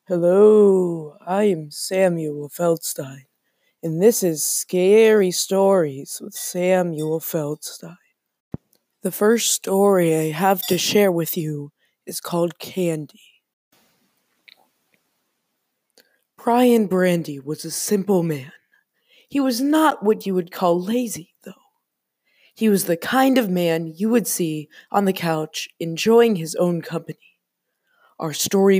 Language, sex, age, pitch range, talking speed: English, female, 20-39, 165-220 Hz, 120 wpm